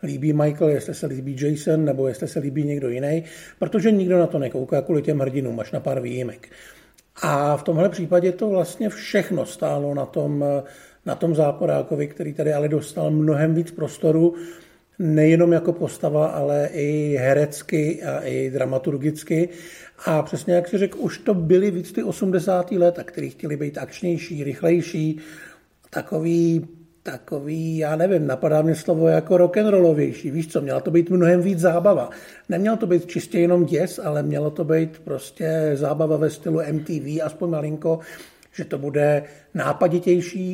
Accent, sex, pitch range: native, male, 150-175 Hz